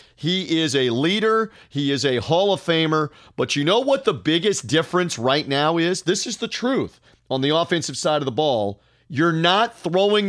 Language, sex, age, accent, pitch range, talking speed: English, male, 40-59, American, 130-170 Hz, 200 wpm